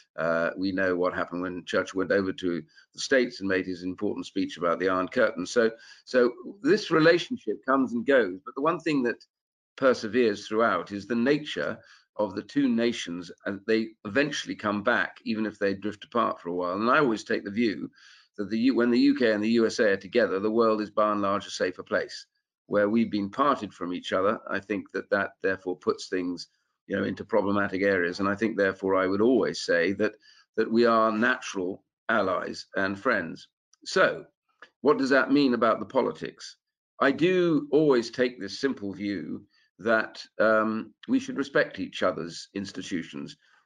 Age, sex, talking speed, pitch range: 50-69, male, 190 wpm, 100-135 Hz